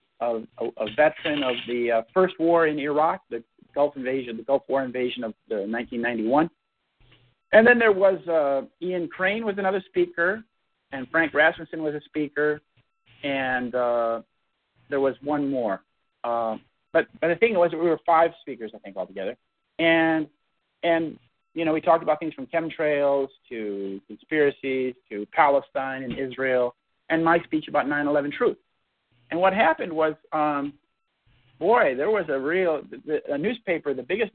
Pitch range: 130-170 Hz